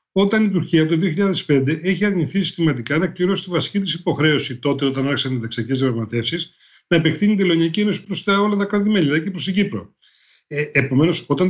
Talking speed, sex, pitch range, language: 190 wpm, male, 130-180 Hz, Greek